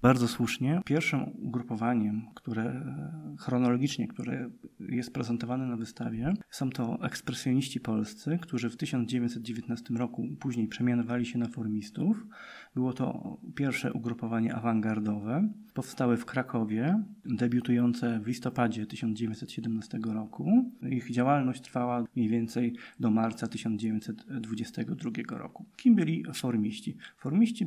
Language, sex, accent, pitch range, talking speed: Polish, male, native, 120-140 Hz, 105 wpm